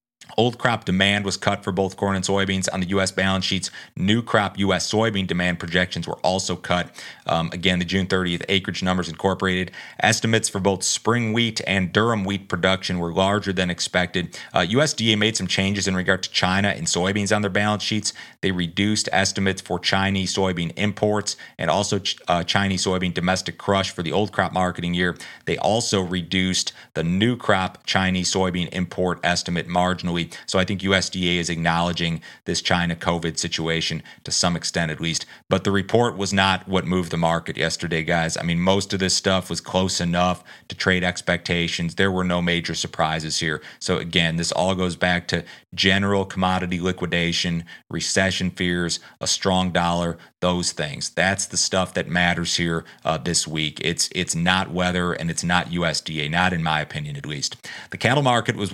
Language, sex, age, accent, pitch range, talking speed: English, male, 30-49, American, 85-100 Hz, 185 wpm